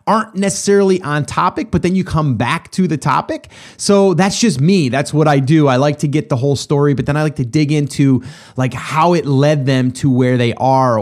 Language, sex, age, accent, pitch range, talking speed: English, male, 30-49, American, 125-165 Hz, 235 wpm